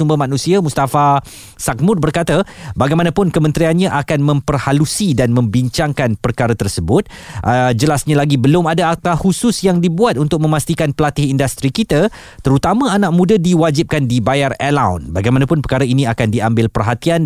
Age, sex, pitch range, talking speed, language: 20-39, male, 120-160 Hz, 135 wpm, Malay